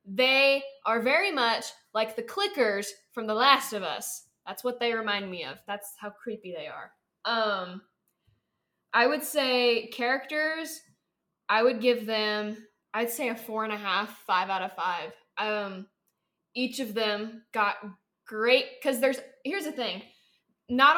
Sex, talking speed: female, 155 wpm